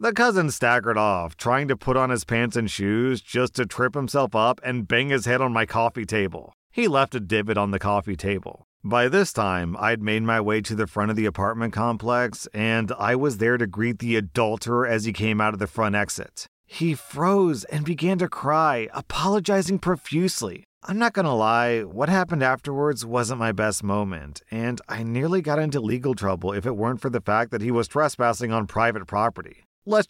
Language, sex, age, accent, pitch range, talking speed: English, male, 40-59, American, 110-135 Hz, 205 wpm